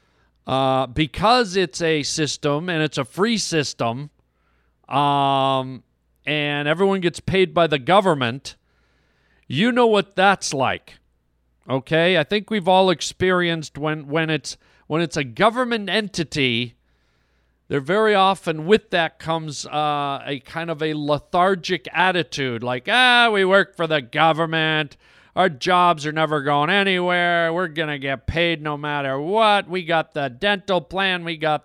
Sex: male